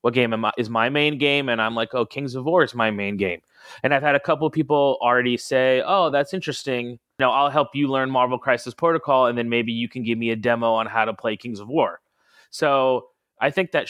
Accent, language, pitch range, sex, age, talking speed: American, English, 115-140 Hz, male, 30-49, 245 wpm